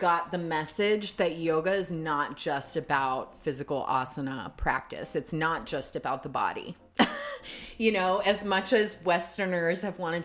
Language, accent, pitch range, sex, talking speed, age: English, American, 155-195 Hz, female, 150 wpm, 30-49